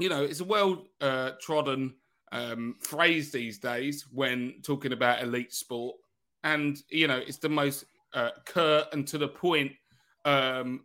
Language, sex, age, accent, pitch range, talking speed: English, male, 30-49, British, 145-195 Hz, 160 wpm